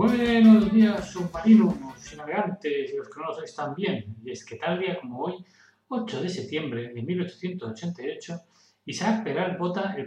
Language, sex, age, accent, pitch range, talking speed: Spanish, male, 30-49, Spanish, 130-200 Hz, 160 wpm